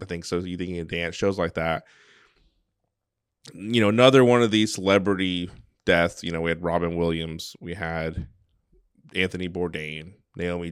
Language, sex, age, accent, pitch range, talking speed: English, male, 20-39, American, 80-95 Hz, 160 wpm